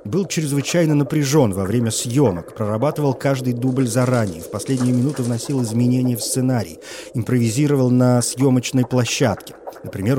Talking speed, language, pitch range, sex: 130 wpm, Russian, 110-140 Hz, male